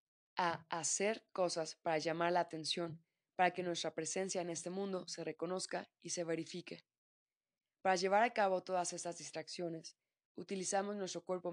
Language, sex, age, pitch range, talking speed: Spanish, female, 20-39, 165-185 Hz, 150 wpm